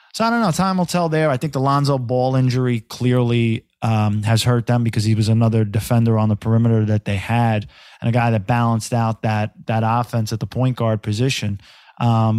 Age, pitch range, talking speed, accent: 20-39, 110-130 Hz, 220 wpm, American